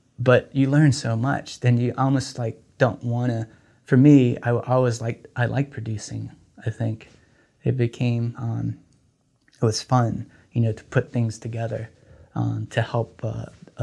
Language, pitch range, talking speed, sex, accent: English, 110-130 Hz, 165 wpm, male, American